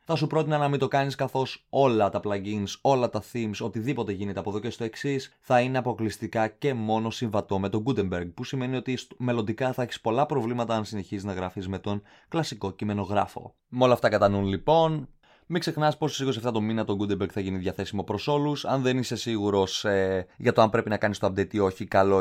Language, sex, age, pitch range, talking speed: Greek, male, 20-39, 95-125 Hz, 220 wpm